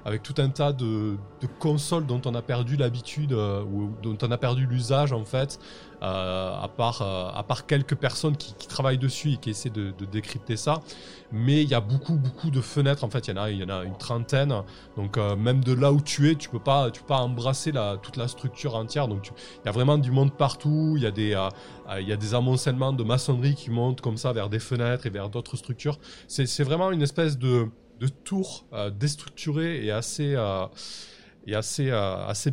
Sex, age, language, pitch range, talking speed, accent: male, 20-39, French, 105-145 Hz, 235 wpm, French